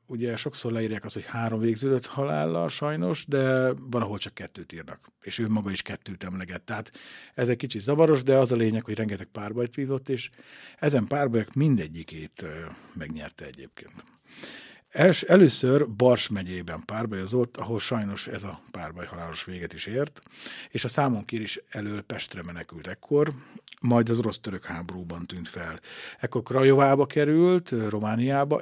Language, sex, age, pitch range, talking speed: Hungarian, male, 50-69, 100-130 Hz, 150 wpm